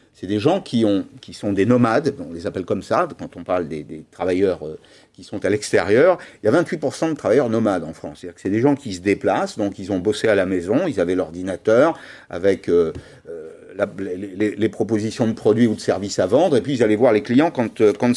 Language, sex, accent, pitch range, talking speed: French, male, French, 105-145 Hz, 235 wpm